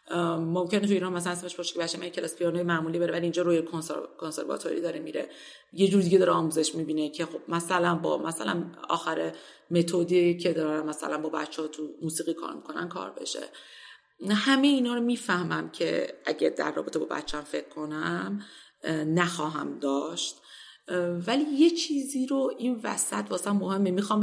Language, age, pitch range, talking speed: Persian, 30-49, 170-220 Hz, 170 wpm